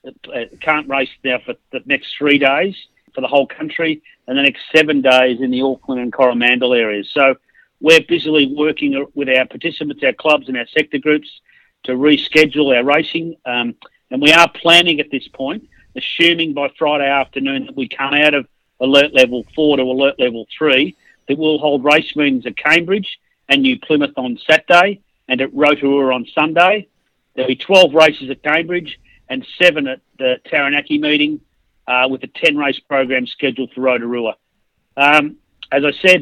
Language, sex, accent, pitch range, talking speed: English, male, Australian, 130-155 Hz, 175 wpm